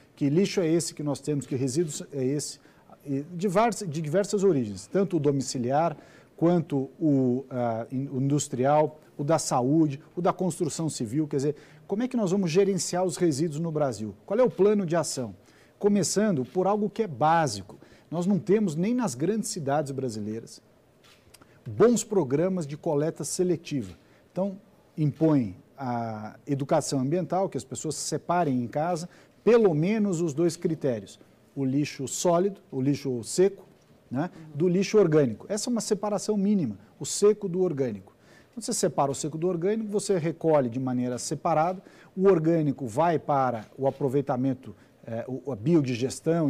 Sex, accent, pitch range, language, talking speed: male, Brazilian, 135-180 Hz, Portuguese, 155 wpm